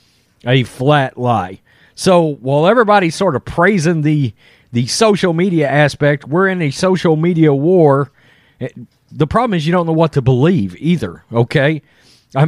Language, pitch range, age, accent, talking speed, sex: English, 140-195 Hz, 40-59, American, 155 wpm, male